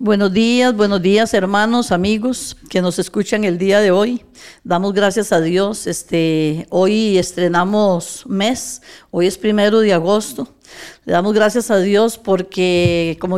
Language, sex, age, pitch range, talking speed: Spanish, female, 50-69, 180-215 Hz, 150 wpm